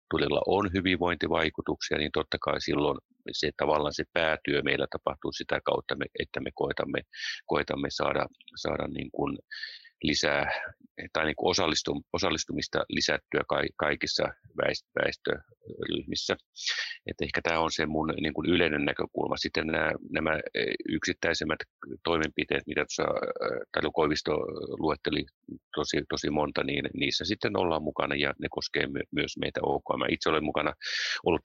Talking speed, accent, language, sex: 120 wpm, native, Finnish, male